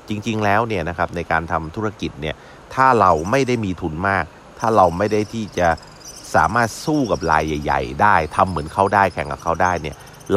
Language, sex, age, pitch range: Thai, male, 30-49, 75-95 Hz